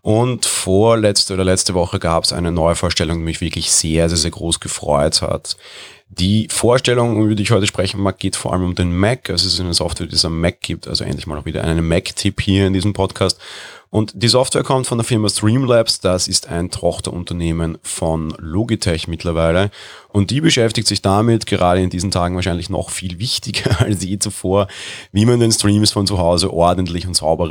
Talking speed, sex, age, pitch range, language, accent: 205 wpm, male, 30-49, 85-105 Hz, German, German